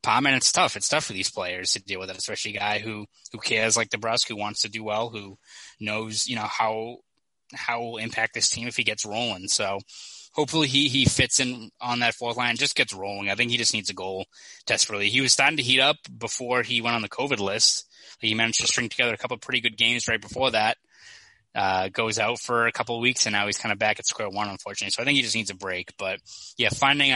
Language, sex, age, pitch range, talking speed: English, male, 20-39, 105-120 Hz, 255 wpm